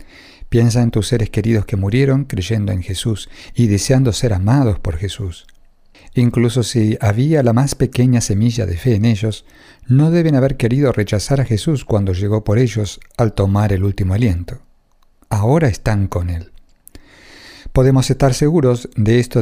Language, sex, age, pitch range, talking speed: Spanish, male, 50-69, 100-130 Hz, 160 wpm